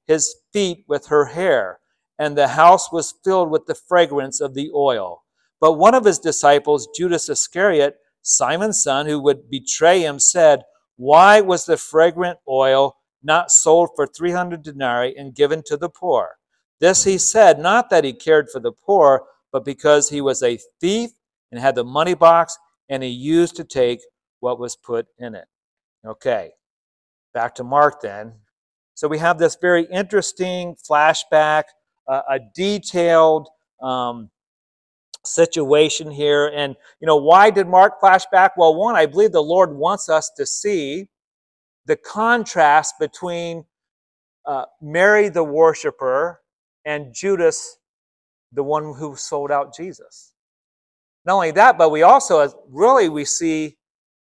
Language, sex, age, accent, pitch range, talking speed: English, male, 50-69, American, 145-185 Hz, 150 wpm